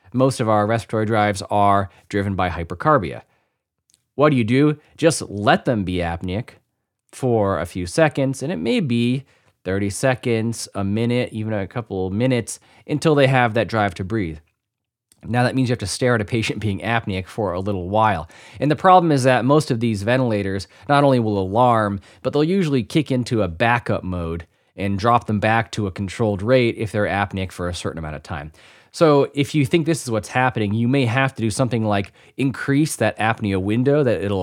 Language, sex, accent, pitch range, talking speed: English, male, American, 100-130 Hz, 205 wpm